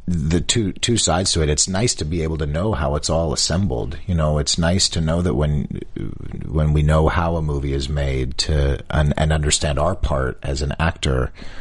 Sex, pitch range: male, 75-90 Hz